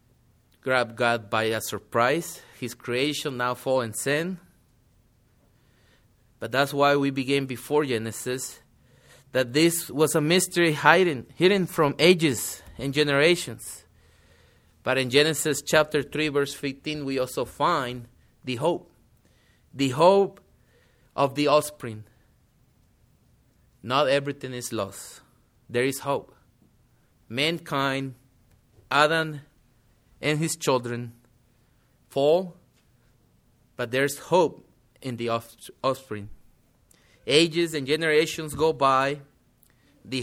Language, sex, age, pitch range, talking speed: English, male, 30-49, 125-160 Hz, 105 wpm